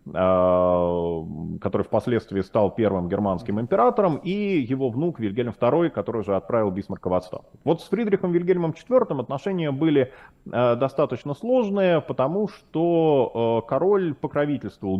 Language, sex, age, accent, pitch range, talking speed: Russian, male, 30-49, native, 100-150 Hz, 120 wpm